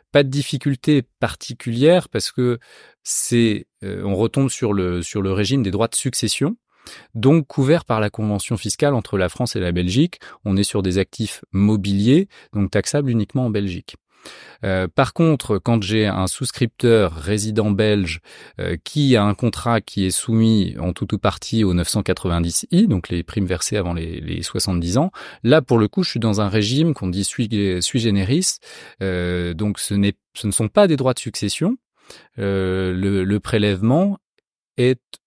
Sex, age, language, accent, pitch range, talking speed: male, 30-49, French, French, 95-125 Hz, 180 wpm